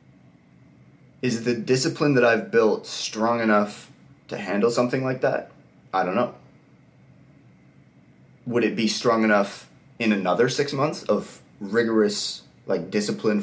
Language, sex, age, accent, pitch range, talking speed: English, male, 30-49, American, 100-130 Hz, 130 wpm